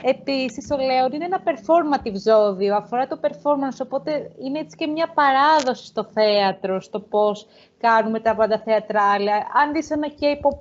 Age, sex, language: 30-49, female, Greek